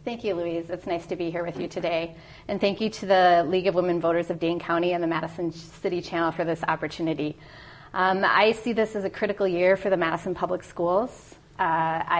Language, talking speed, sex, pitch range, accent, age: English, 220 wpm, female, 170-200 Hz, American, 30-49